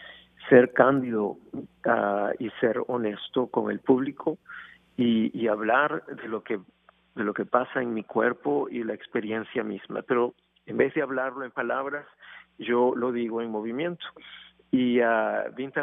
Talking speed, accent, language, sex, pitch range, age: 150 wpm, Mexican, Spanish, male, 110-130 Hz, 50-69